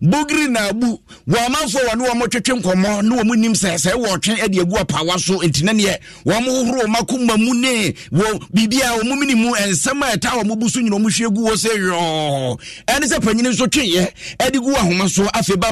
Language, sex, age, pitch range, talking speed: English, male, 50-69, 180-230 Hz, 170 wpm